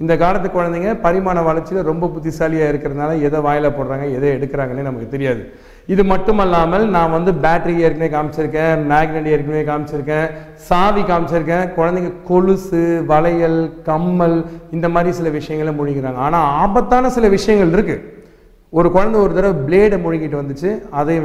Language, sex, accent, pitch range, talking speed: Tamil, male, native, 155-200 Hz, 140 wpm